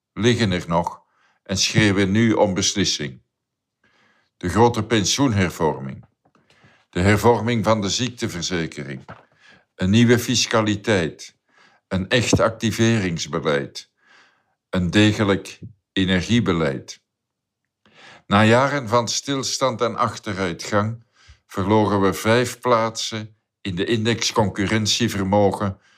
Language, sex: Dutch, male